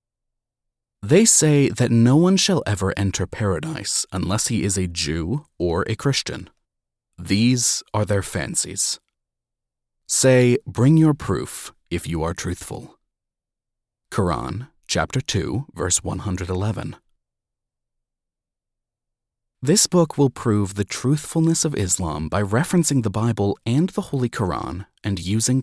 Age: 30-49